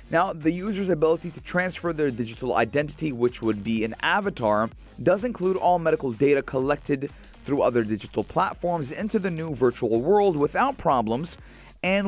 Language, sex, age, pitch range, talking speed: English, male, 30-49, 125-185 Hz, 160 wpm